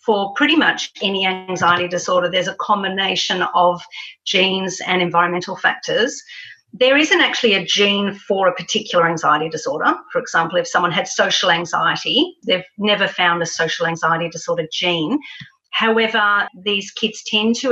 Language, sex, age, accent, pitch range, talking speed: English, female, 40-59, Australian, 175-215 Hz, 150 wpm